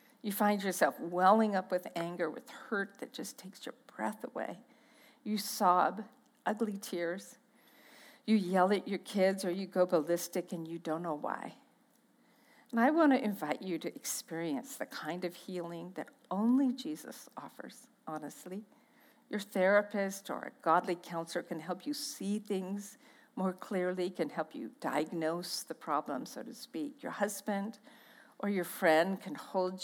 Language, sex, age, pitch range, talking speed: English, female, 50-69, 175-245 Hz, 160 wpm